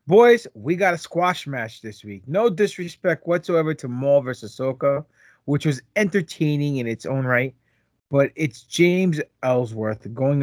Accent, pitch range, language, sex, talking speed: American, 120-175 Hz, English, male, 155 wpm